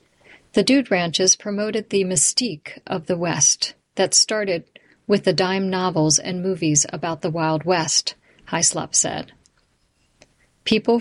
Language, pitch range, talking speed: English, 160-190 Hz, 130 wpm